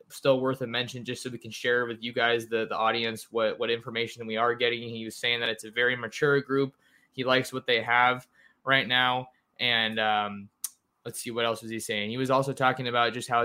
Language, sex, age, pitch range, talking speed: English, male, 20-39, 115-130 Hz, 235 wpm